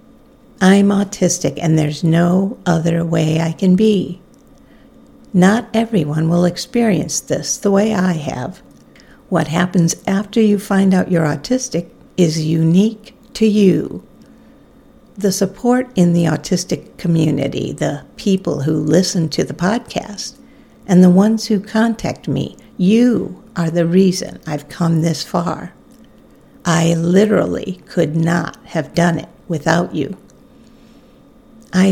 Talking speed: 130 wpm